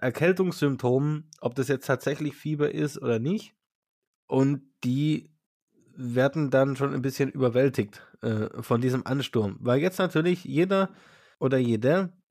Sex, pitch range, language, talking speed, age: male, 125-155 Hz, German, 130 wpm, 20-39